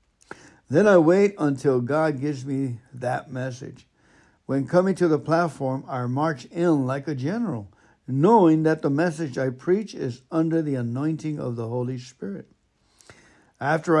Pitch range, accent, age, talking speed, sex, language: 130-160 Hz, American, 60-79, 150 wpm, male, English